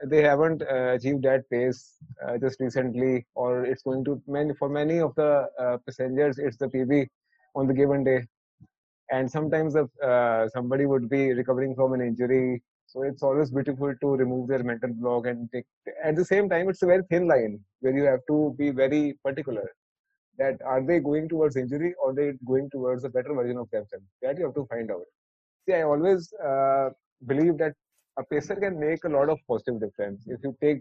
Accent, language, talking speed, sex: Indian, English, 205 wpm, male